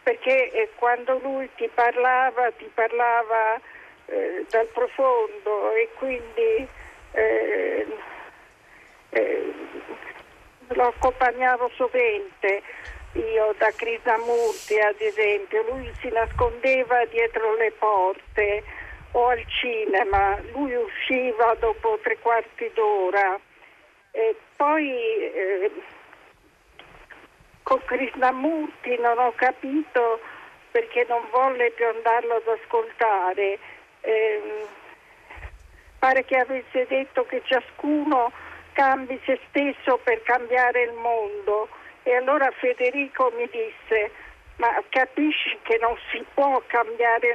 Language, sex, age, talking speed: Italian, female, 50-69, 100 wpm